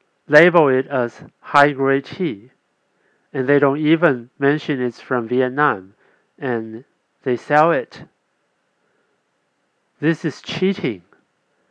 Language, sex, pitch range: Chinese, male, 115-145 Hz